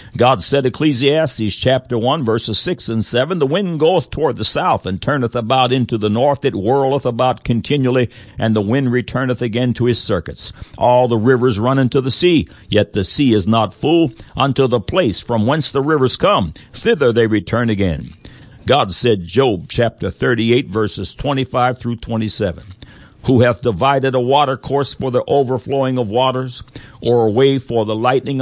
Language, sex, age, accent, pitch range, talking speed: English, male, 60-79, American, 110-140 Hz, 175 wpm